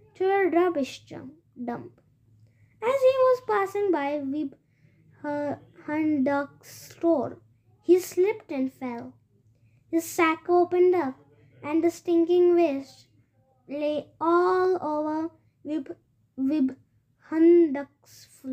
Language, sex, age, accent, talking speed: English, female, 20-39, Indian, 85 wpm